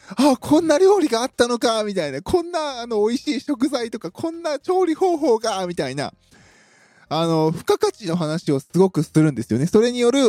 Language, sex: Japanese, male